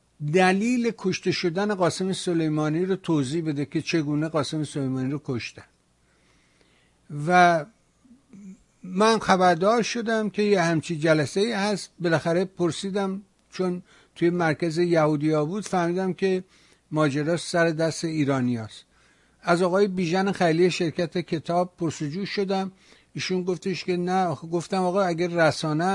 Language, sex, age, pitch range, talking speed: Persian, male, 60-79, 155-185 Hz, 125 wpm